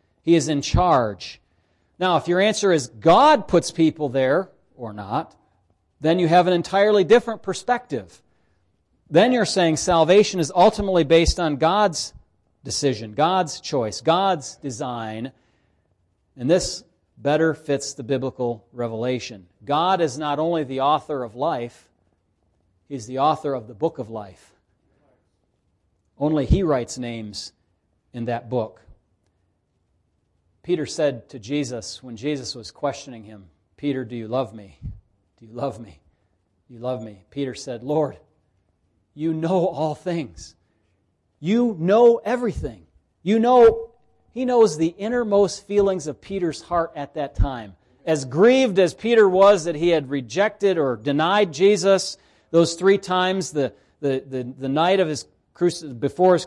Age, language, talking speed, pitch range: 40-59, English, 145 wpm, 110-180 Hz